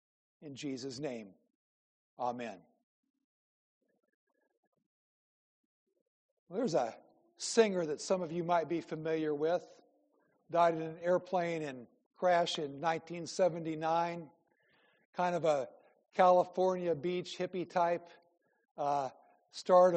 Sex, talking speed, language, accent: male, 100 wpm, English, American